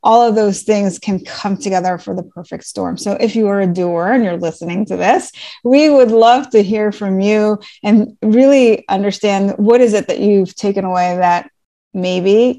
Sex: female